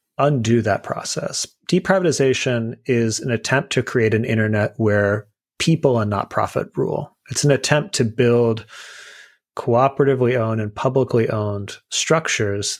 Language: English